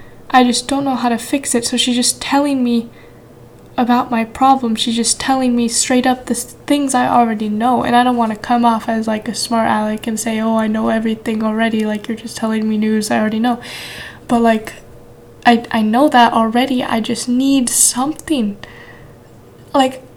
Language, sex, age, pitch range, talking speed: English, female, 10-29, 215-255 Hz, 200 wpm